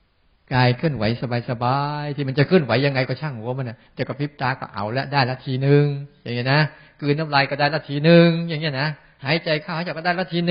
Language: Thai